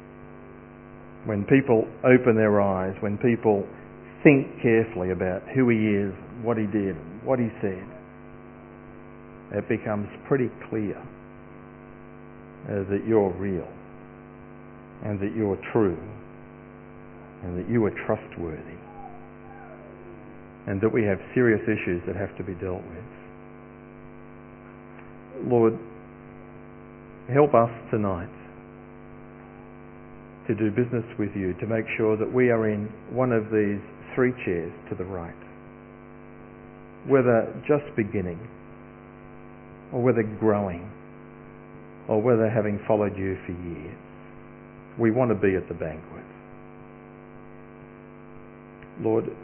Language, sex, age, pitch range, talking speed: English, male, 50-69, 85-115 Hz, 110 wpm